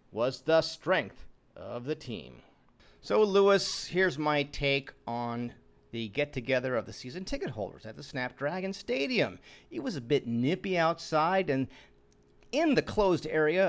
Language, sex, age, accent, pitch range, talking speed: English, male, 40-59, American, 125-170 Hz, 155 wpm